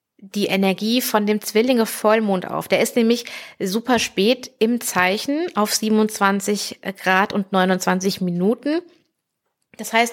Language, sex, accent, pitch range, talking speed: German, female, German, 195-235 Hz, 125 wpm